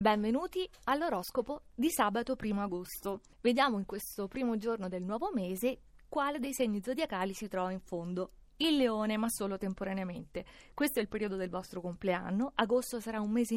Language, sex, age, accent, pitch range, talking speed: Italian, female, 30-49, native, 200-260 Hz, 170 wpm